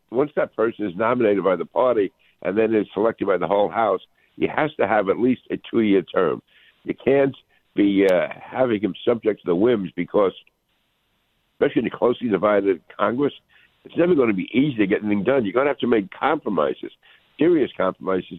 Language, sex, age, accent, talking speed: English, male, 60-79, American, 200 wpm